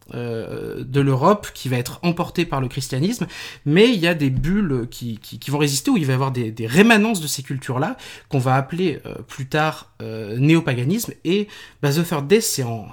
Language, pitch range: French, 130-170 Hz